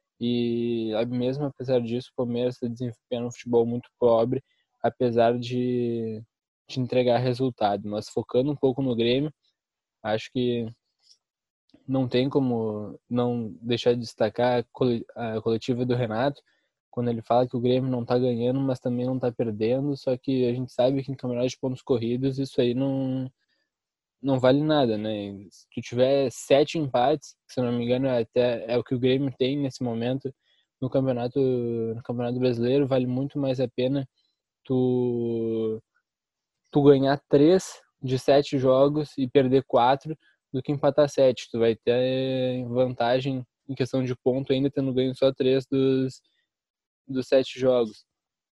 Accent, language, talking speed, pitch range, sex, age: Brazilian, Portuguese, 155 wpm, 120-135 Hz, male, 10-29